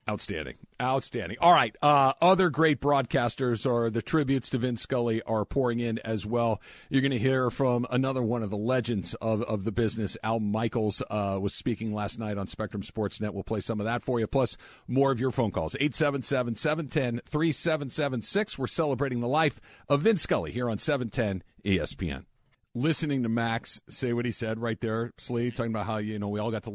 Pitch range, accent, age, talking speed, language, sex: 110-130 Hz, American, 50-69, 200 wpm, English, male